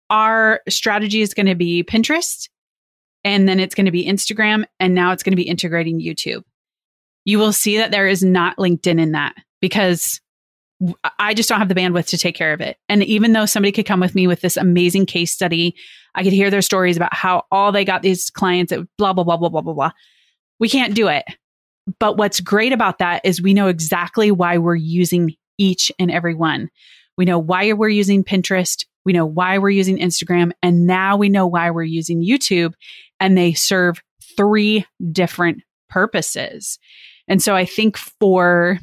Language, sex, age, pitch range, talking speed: English, female, 30-49, 175-205 Hz, 200 wpm